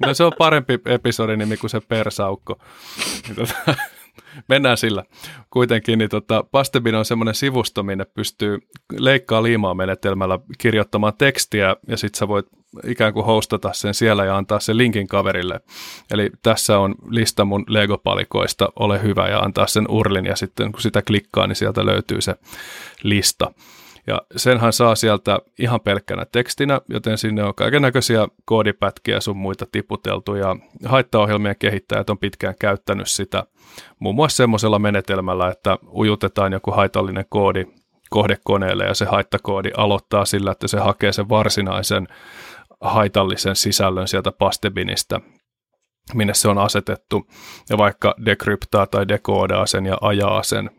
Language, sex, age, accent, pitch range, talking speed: Finnish, male, 20-39, native, 100-115 Hz, 140 wpm